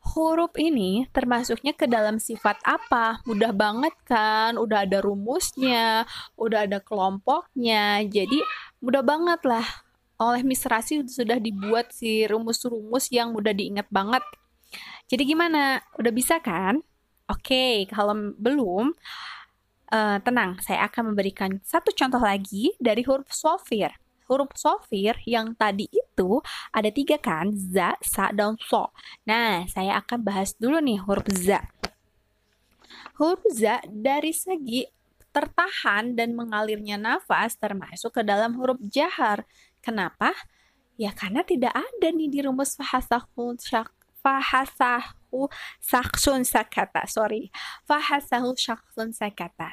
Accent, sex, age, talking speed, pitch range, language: native, female, 20-39, 115 wpm, 210-275 Hz, Indonesian